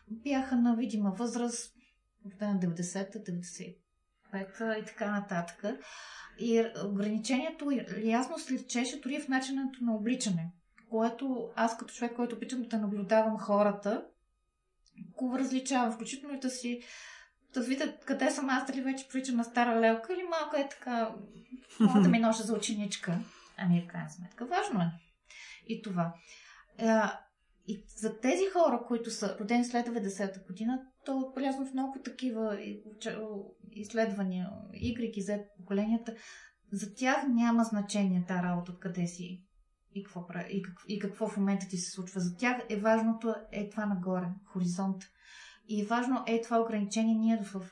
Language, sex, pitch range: Bulgarian, female, 195-240 Hz